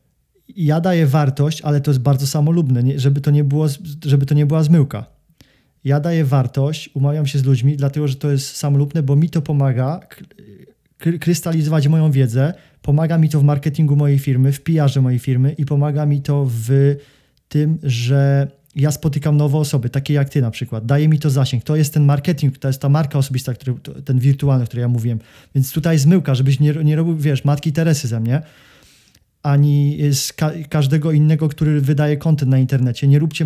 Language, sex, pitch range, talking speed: Polish, male, 140-155 Hz, 195 wpm